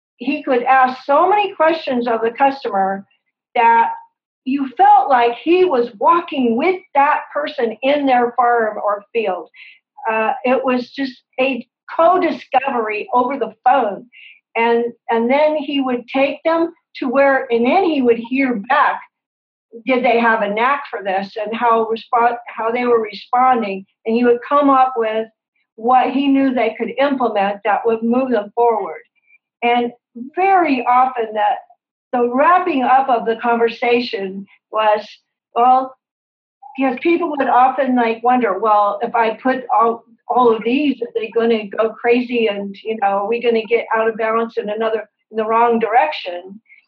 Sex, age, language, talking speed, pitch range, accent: female, 50-69, English, 165 wpm, 225-275 Hz, American